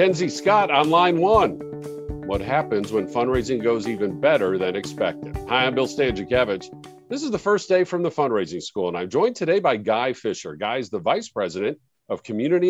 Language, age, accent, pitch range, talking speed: English, 50-69, American, 110-145 Hz, 190 wpm